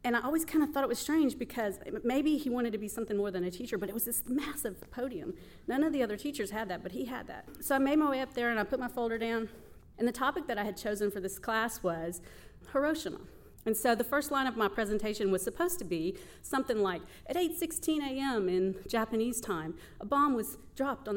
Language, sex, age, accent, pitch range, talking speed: English, female, 40-59, American, 210-295 Hz, 245 wpm